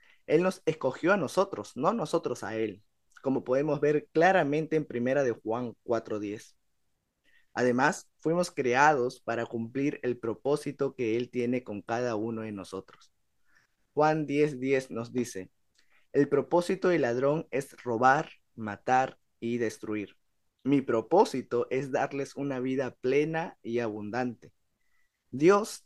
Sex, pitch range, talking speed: male, 115-145 Hz, 130 wpm